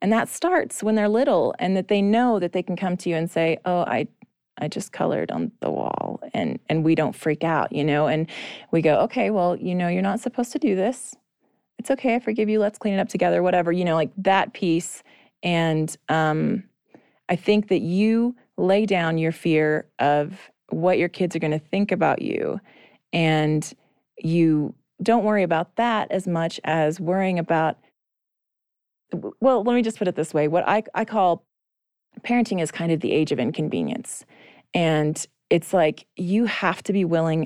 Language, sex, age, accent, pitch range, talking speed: English, female, 30-49, American, 160-210 Hz, 195 wpm